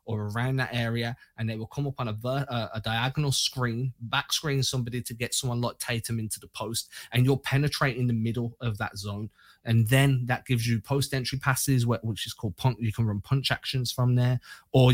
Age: 20-39